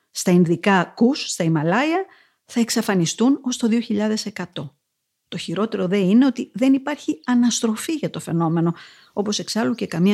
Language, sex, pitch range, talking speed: Greek, female, 170-255 Hz, 150 wpm